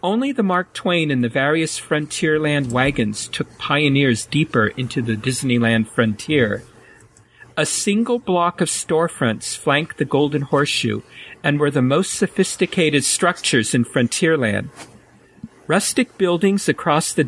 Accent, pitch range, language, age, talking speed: American, 130-170 Hz, English, 50-69, 130 wpm